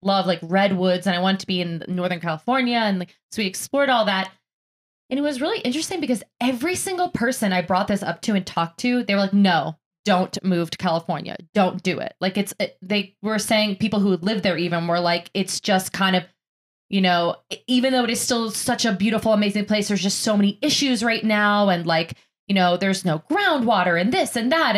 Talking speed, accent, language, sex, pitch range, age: 225 wpm, American, English, female, 175-225 Hz, 20-39